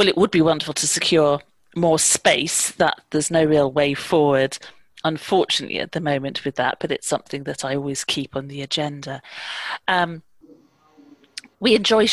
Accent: British